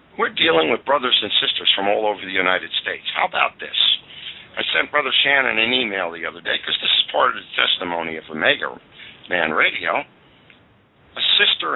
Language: English